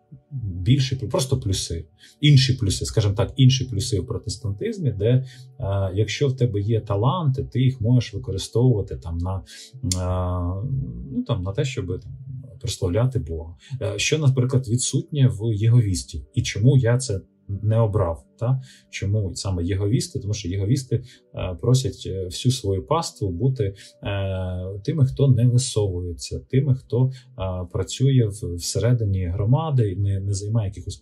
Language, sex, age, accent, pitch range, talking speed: Ukrainian, male, 20-39, native, 100-130 Hz, 130 wpm